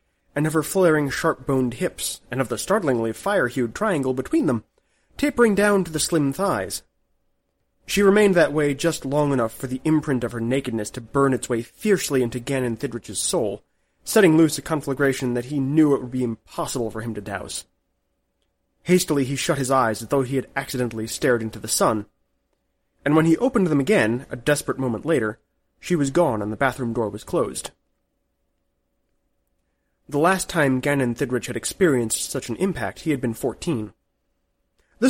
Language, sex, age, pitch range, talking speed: English, male, 30-49, 115-155 Hz, 180 wpm